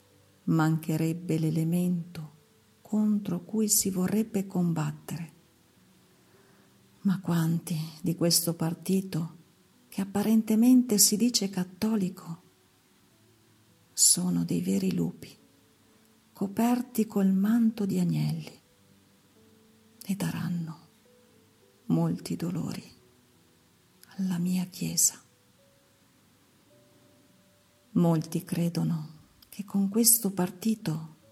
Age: 50-69